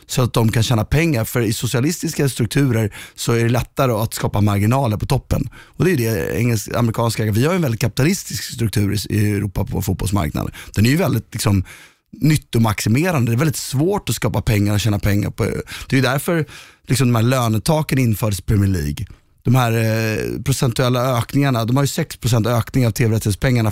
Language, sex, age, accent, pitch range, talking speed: Swedish, male, 20-39, native, 105-135 Hz, 200 wpm